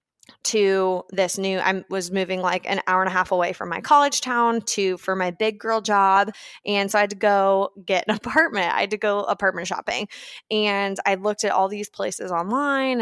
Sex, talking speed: female, 210 wpm